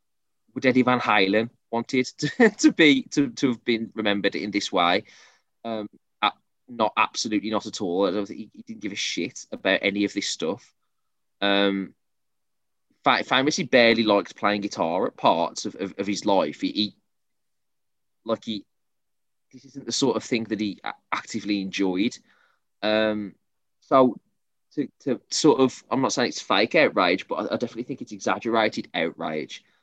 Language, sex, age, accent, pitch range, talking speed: English, male, 20-39, British, 100-125 Hz, 160 wpm